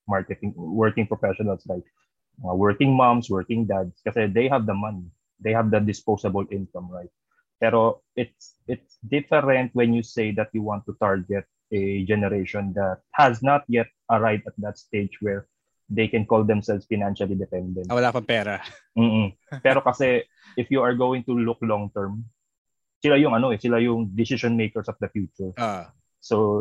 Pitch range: 100-120 Hz